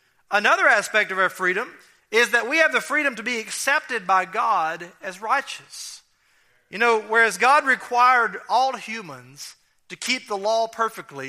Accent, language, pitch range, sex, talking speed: American, English, 190-255 Hz, male, 160 wpm